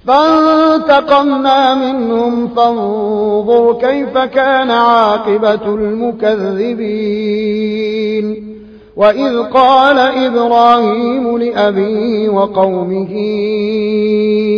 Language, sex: Arabic, male